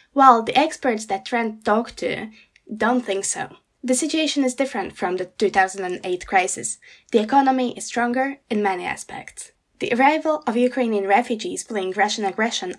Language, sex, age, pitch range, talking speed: Slovak, female, 10-29, 205-270 Hz, 155 wpm